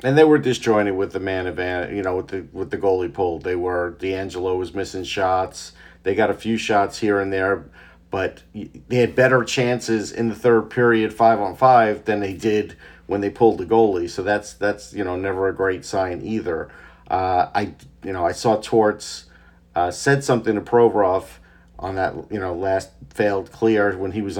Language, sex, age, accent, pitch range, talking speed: English, male, 50-69, American, 95-115 Hz, 200 wpm